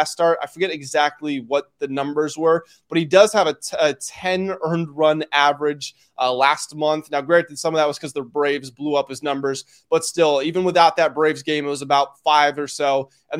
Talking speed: 220 wpm